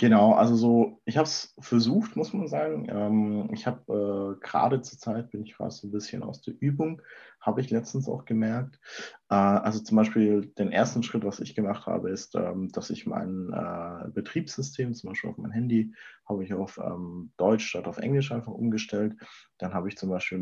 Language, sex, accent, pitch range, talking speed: German, male, German, 95-120 Hz, 200 wpm